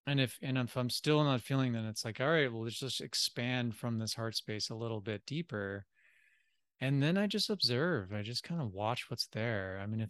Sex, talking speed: male, 240 wpm